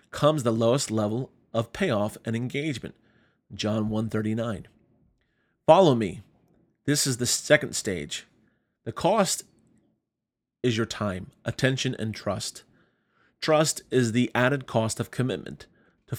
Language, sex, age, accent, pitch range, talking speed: English, male, 30-49, American, 115-135 Hz, 120 wpm